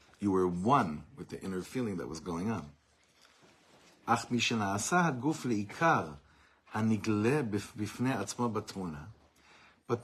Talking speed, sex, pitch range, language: 70 wpm, male, 90-115 Hz, English